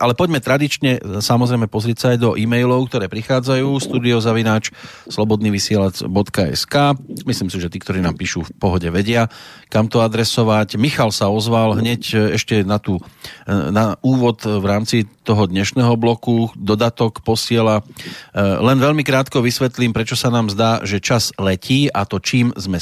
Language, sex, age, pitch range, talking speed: Slovak, male, 40-59, 100-130 Hz, 150 wpm